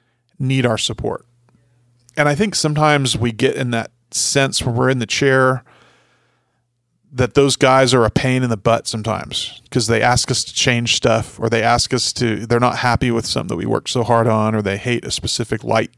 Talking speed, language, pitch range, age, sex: 210 wpm, English, 115-135 Hz, 40-59, male